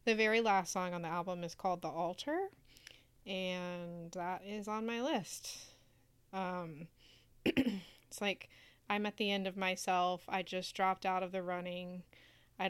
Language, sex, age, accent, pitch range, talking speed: English, female, 20-39, American, 170-195 Hz, 160 wpm